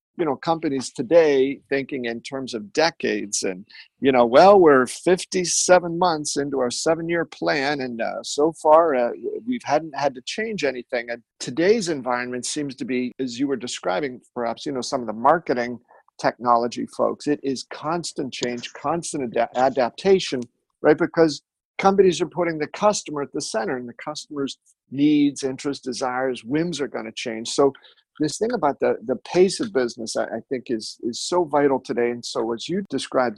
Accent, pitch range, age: American, 125-160 Hz, 50-69